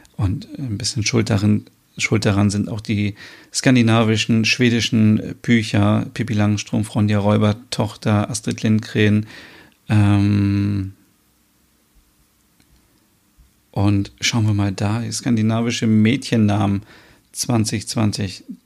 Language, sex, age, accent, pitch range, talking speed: German, male, 40-59, German, 105-125 Hz, 90 wpm